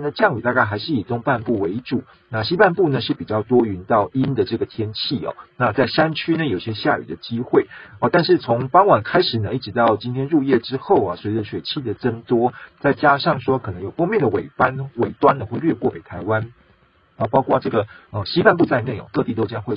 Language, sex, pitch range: Chinese, male, 105-135 Hz